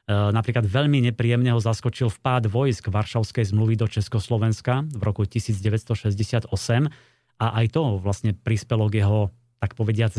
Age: 30-49